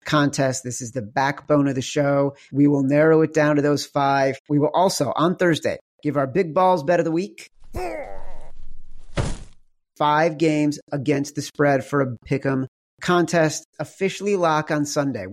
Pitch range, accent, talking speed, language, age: 135-165 Hz, American, 165 wpm, English, 40-59